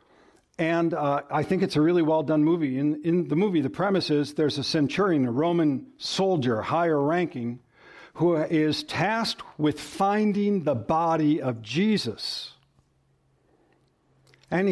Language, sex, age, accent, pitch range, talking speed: English, male, 60-79, American, 145-185 Hz, 140 wpm